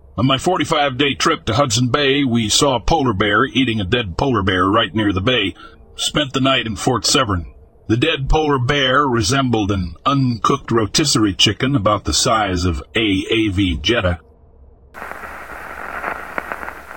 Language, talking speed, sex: English, 150 wpm, male